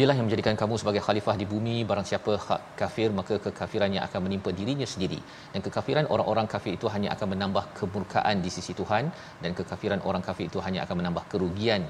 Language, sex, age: Malayalam, male, 40-59